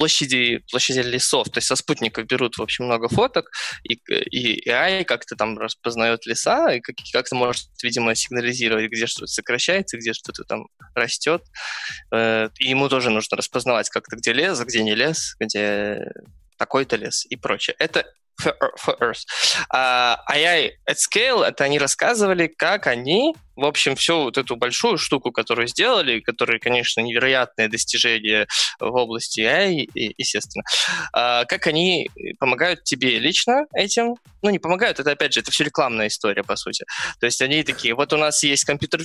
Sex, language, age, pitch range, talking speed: male, Russian, 20-39, 115-160 Hz, 160 wpm